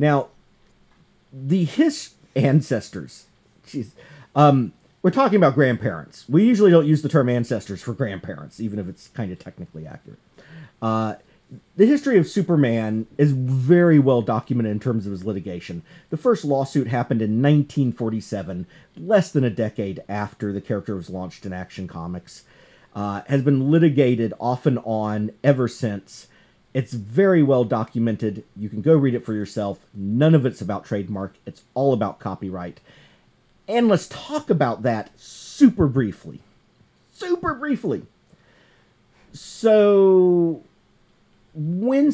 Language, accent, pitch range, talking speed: English, American, 105-160 Hz, 140 wpm